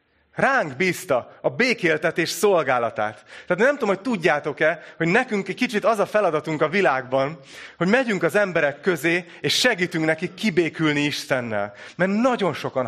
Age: 30-49